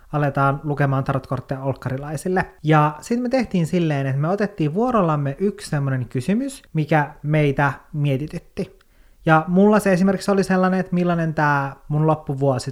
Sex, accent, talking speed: male, native, 140 wpm